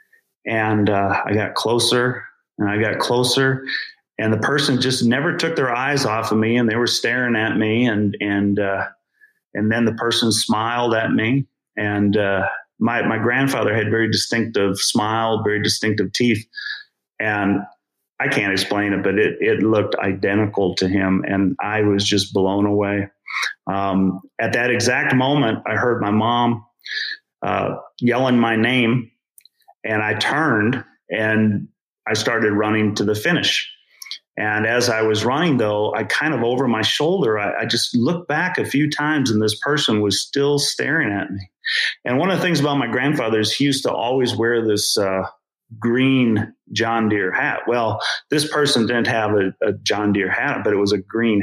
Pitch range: 105-125 Hz